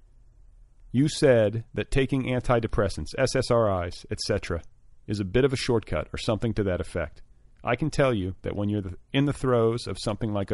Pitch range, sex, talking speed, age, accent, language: 85-110 Hz, male, 175 wpm, 40-59, American, English